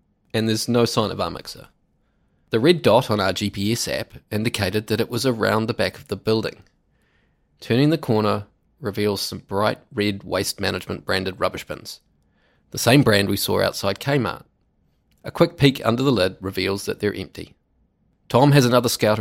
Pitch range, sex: 100-120 Hz, male